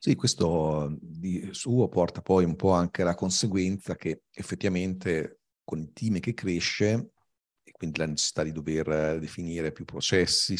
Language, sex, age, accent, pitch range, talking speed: Italian, male, 40-59, native, 80-95 Hz, 155 wpm